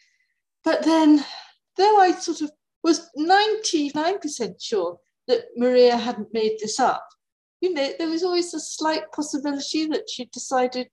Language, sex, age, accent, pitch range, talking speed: English, female, 40-59, British, 230-345 Hz, 145 wpm